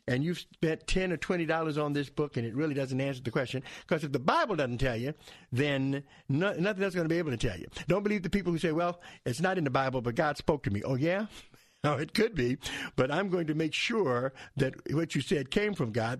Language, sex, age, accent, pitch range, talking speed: English, male, 50-69, American, 130-175 Hz, 260 wpm